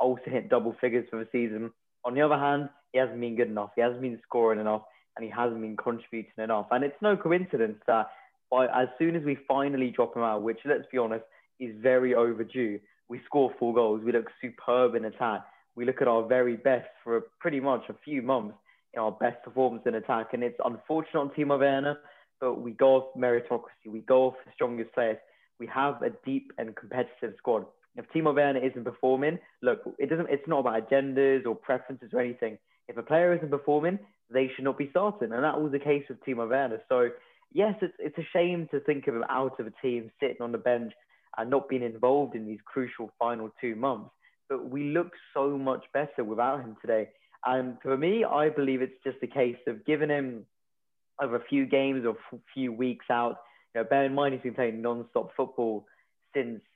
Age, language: 20-39, English